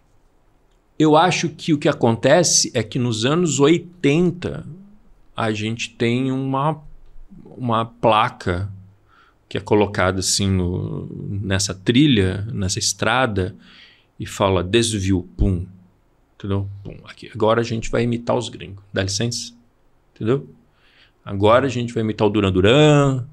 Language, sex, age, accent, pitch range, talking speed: Portuguese, male, 40-59, Brazilian, 105-150 Hz, 125 wpm